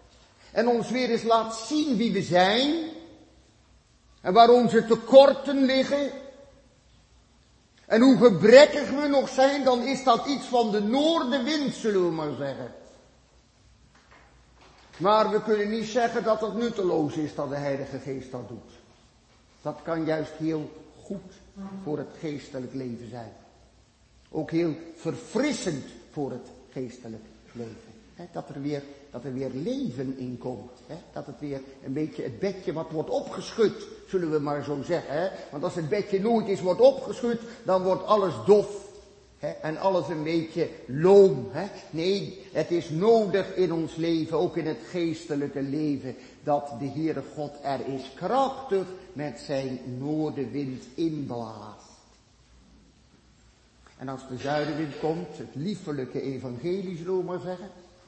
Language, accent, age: Dutch, Dutch, 50-69